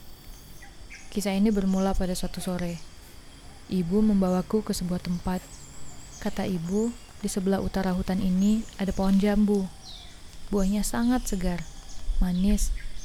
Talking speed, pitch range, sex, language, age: 115 wpm, 165-210 Hz, female, Indonesian, 20-39